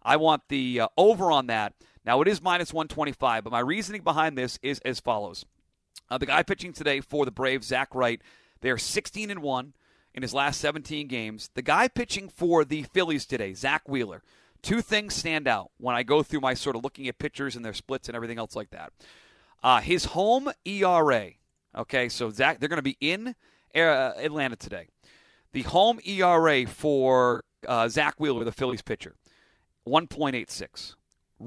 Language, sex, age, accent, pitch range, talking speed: English, male, 40-59, American, 125-165 Hz, 180 wpm